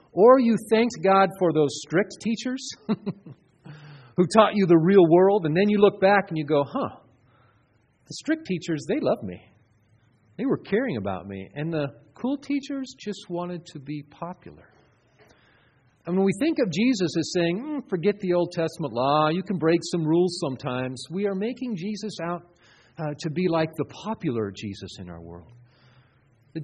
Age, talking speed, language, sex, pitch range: 40-59, 180 wpm, English, male, 120-190 Hz